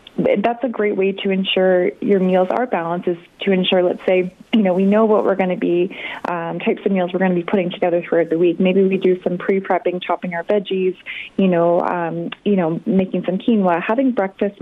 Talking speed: 225 wpm